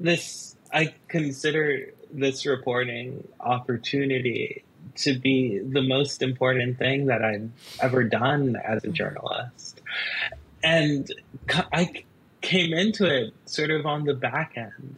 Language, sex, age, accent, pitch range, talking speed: English, male, 20-39, American, 115-145 Hz, 120 wpm